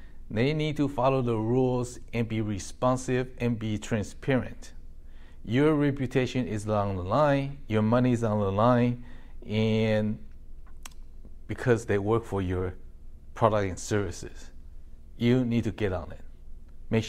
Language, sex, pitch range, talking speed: English, male, 85-125 Hz, 140 wpm